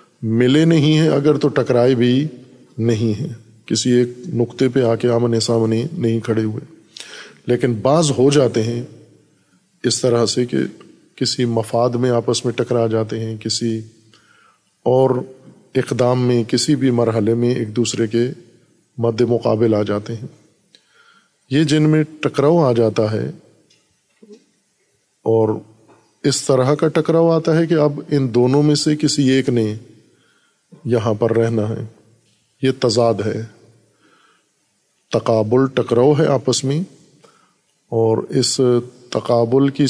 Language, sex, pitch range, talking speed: Urdu, male, 115-140 Hz, 140 wpm